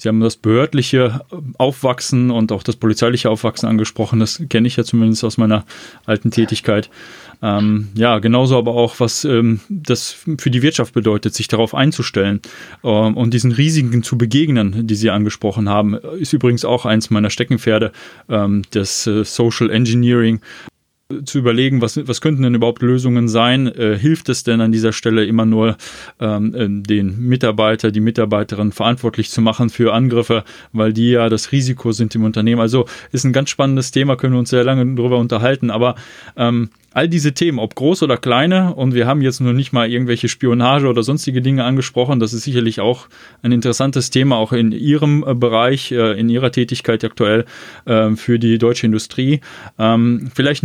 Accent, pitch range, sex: German, 110-130 Hz, male